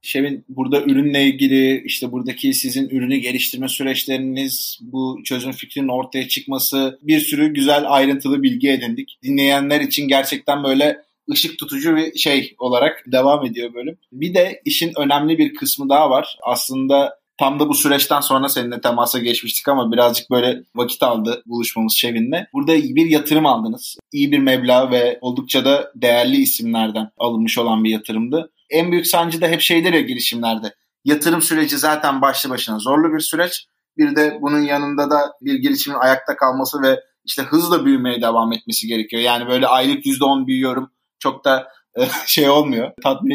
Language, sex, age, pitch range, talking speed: Turkish, male, 30-49, 130-170 Hz, 160 wpm